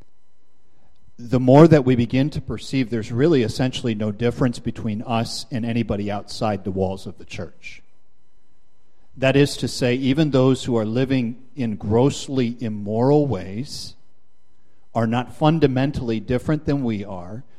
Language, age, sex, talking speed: English, 50-69, male, 145 wpm